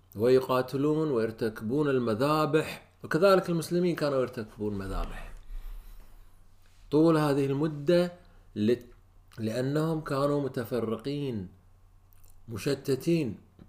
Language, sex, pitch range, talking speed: Arabic, male, 95-155 Hz, 65 wpm